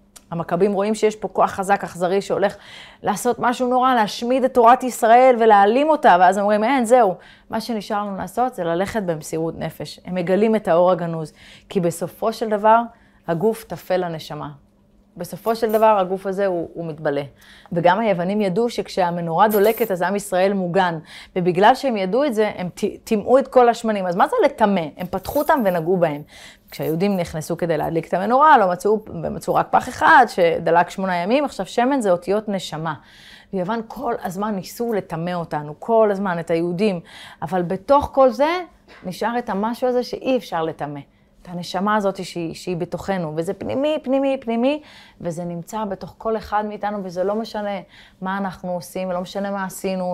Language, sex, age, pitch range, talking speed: Hebrew, female, 30-49, 180-225 Hz, 170 wpm